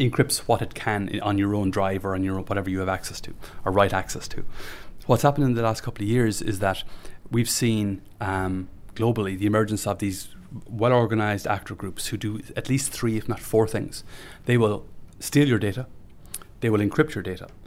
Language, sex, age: English, male, 30-49